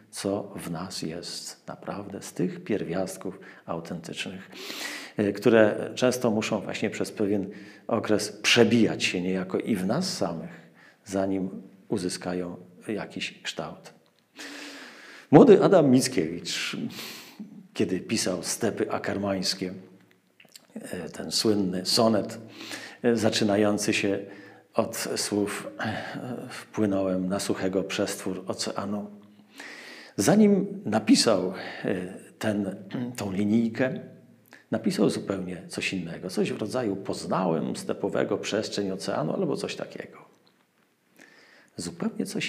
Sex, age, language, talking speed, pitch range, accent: male, 50-69, Polish, 95 wpm, 100-125 Hz, native